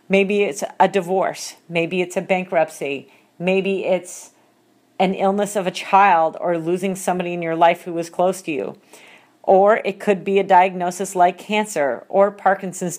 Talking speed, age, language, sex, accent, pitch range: 165 wpm, 40-59, English, female, American, 175-205 Hz